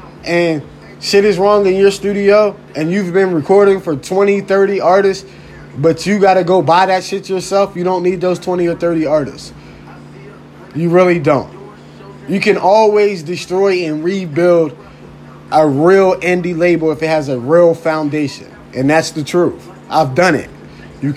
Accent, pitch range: American, 165-225 Hz